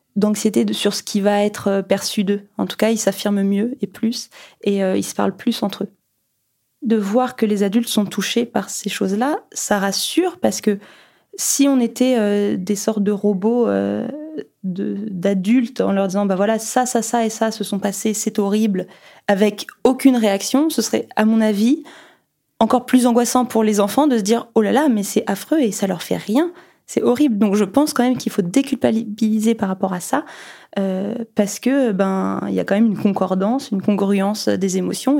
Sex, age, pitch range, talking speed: female, 20-39, 195-235 Hz, 210 wpm